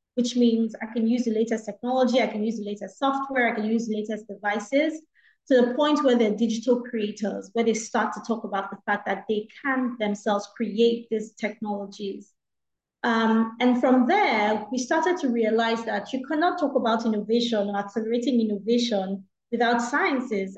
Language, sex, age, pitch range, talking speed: English, female, 20-39, 215-250 Hz, 180 wpm